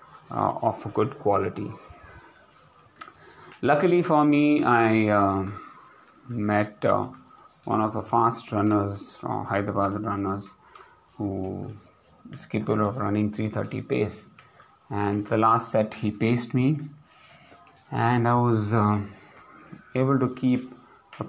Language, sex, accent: English, male, Indian